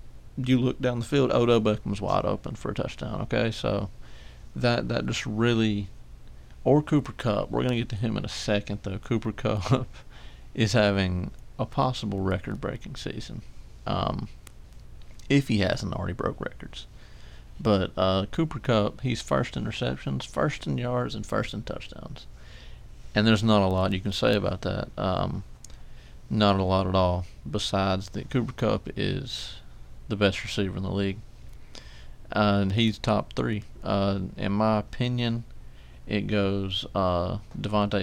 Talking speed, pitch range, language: 160 wpm, 95-115 Hz, English